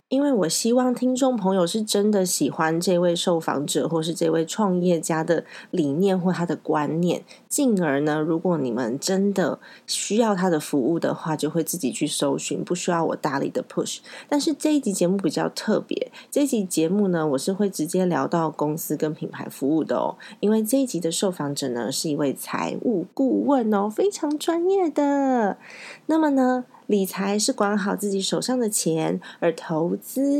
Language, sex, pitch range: Chinese, female, 165-235 Hz